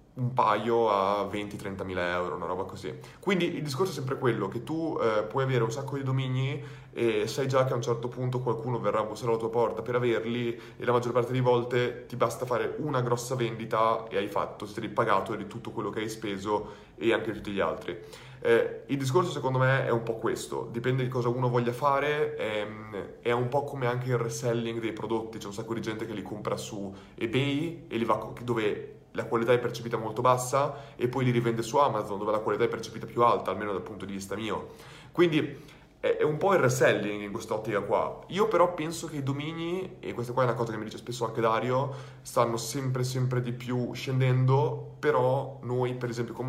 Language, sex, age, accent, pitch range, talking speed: Italian, male, 30-49, native, 115-130 Hz, 225 wpm